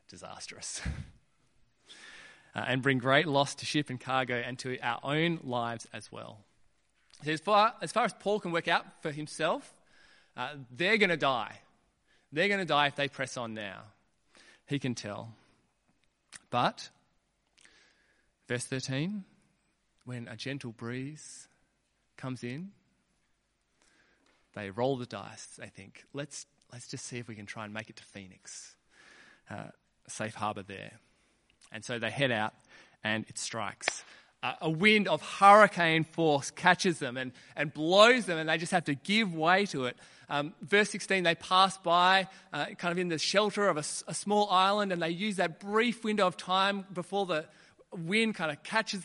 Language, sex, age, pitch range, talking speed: English, male, 20-39, 130-190 Hz, 170 wpm